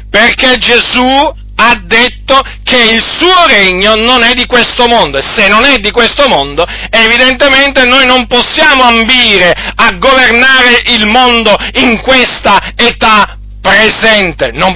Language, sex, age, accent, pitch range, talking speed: Italian, male, 40-59, native, 210-260 Hz, 140 wpm